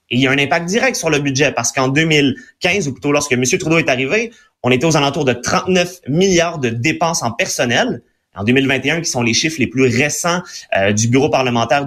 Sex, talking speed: male, 220 wpm